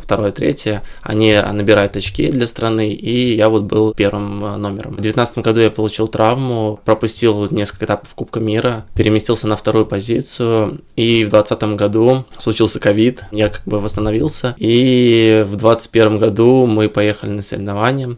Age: 20-39